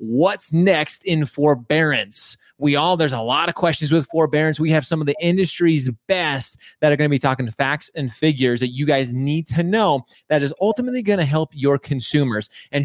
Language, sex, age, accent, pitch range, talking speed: English, male, 30-49, American, 140-195 Hz, 210 wpm